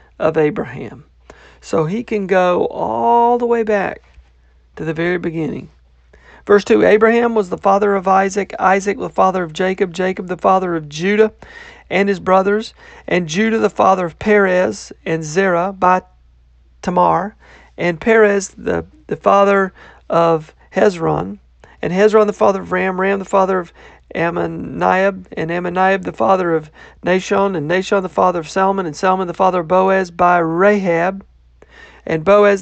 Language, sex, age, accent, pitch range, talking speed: English, male, 40-59, American, 165-200 Hz, 155 wpm